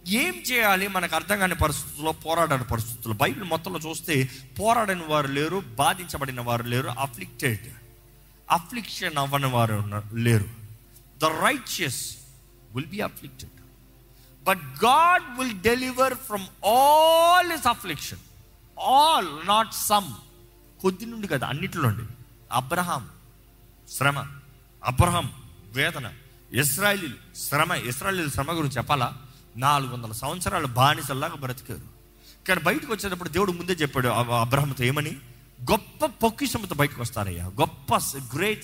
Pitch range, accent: 125-195 Hz, native